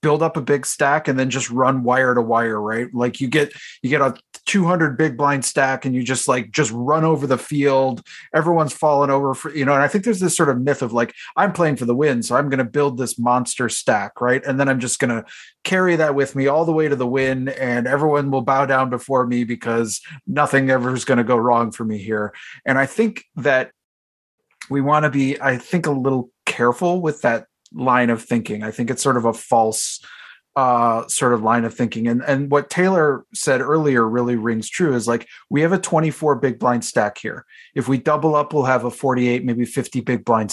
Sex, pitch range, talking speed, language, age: male, 120-150 Hz, 235 wpm, English, 30-49